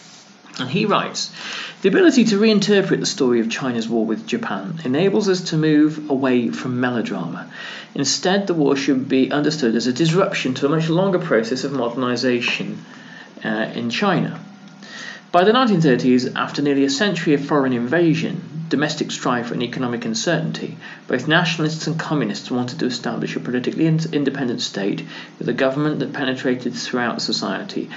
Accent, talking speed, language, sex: British, 155 wpm, English, male